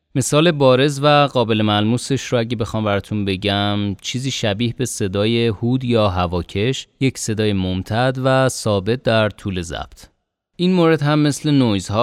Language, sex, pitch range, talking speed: Persian, male, 95-125 Hz, 145 wpm